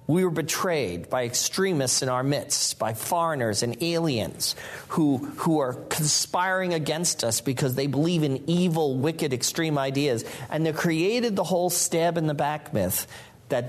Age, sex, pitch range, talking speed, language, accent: 40-59, male, 125-170 Hz, 150 wpm, English, American